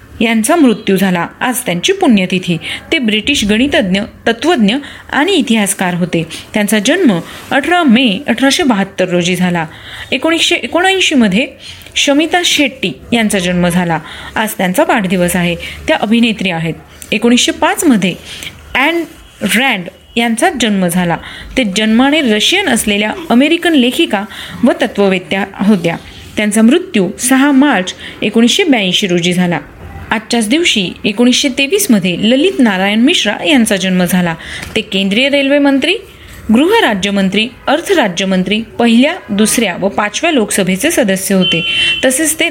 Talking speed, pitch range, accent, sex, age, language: 115 wpm, 195-275 Hz, native, female, 30-49, Marathi